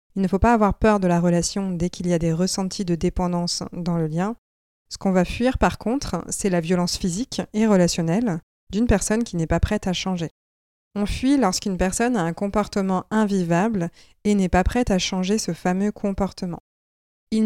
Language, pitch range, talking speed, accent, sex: French, 175-215 Hz, 200 wpm, French, female